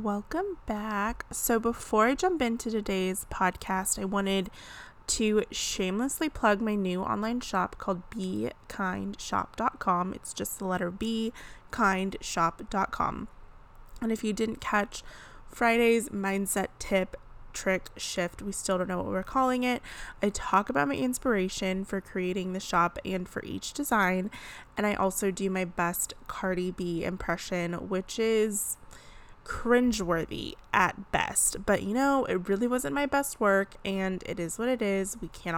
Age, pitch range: 20-39, 185-225 Hz